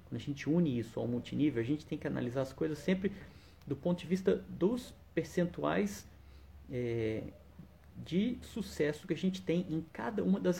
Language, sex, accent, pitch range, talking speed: Portuguese, male, Brazilian, 140-180 Hz, 175 wpm